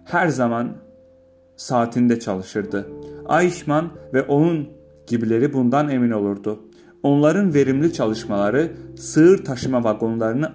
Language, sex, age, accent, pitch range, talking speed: Turkish, male, 40-59, native, 105-145 Hz, 95 wpm